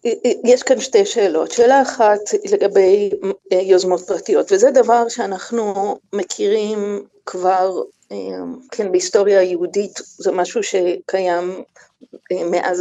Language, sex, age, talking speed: Hebrew, female, 50-69, 100 wpm